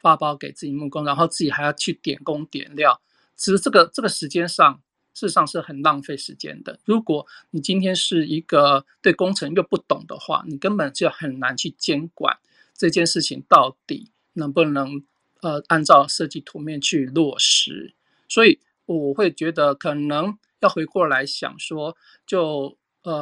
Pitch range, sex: 145-185 Hz, male